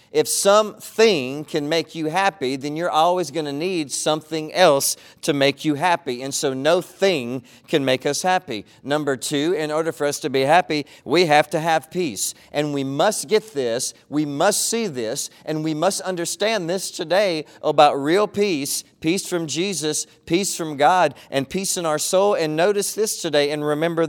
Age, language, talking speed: 40-59, English, 185 wpm